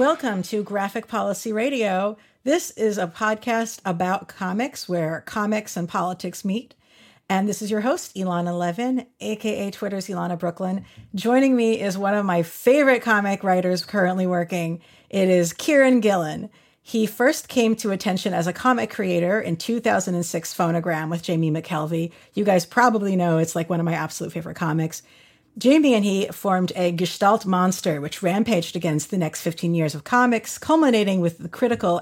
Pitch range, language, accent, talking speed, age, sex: 175-220 Hz, English, American, 165 wpm, 50-69, female